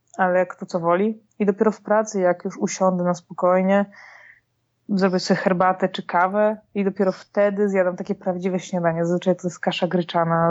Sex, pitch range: female, 185-220 Hz